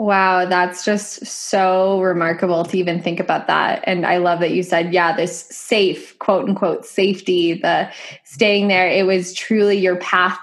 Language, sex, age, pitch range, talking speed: English, female, 10-29, 185-230 Hz, 175 wpm